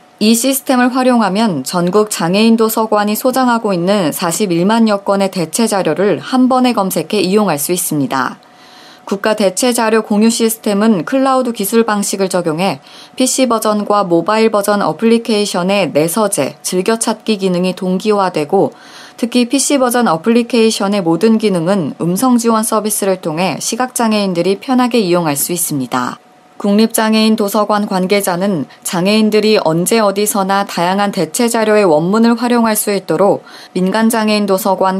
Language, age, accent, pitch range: Korean, 20-39, native, 185-230 Hz